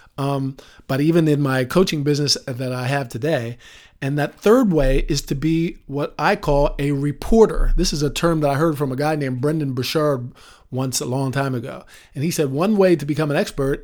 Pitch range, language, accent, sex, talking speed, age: 145-180 Hz, English, American, male, 215 wpm, 50-69